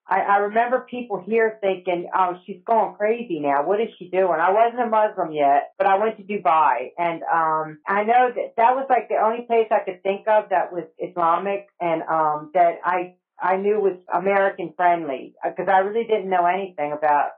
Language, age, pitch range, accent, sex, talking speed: English, 40-59, 165-205 Hz, American, female, 205 wpm